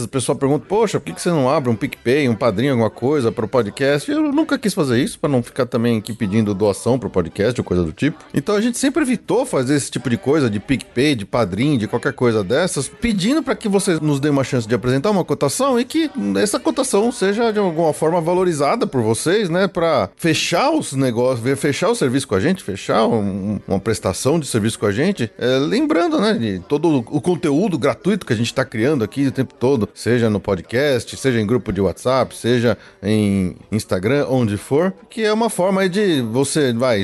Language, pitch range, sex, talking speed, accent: Portuguese, 110-165 Hz, male, 220 wpm, Brazilian